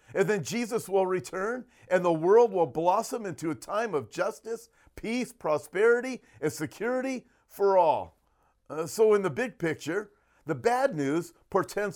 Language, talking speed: English, 155 wpm